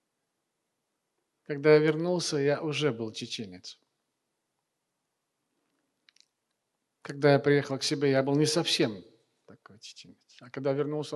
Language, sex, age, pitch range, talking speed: Russian, male, 40-59, 120-150 Hz, 120 wpm